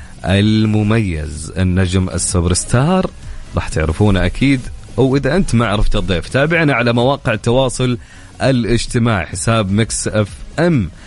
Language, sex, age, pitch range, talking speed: English, male, 30-49, 95-115 Hz, 120 wpm